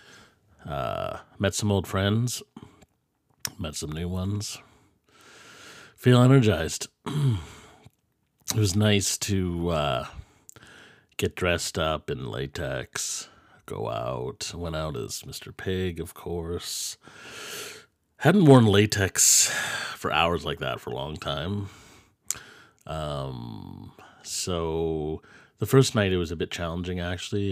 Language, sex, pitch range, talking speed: English, male, 85-105 Hz, 115 wpm